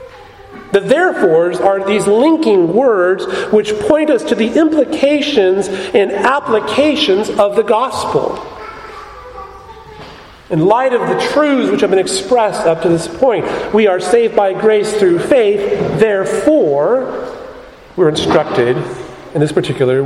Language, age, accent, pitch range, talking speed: English, 40-59, American, 195-305 Hz, 130 wpm